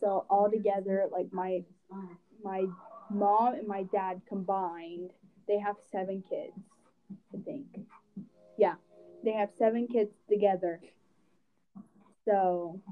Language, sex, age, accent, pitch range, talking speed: English, female, 20-39, American, 190-230 Hz, 110 wpm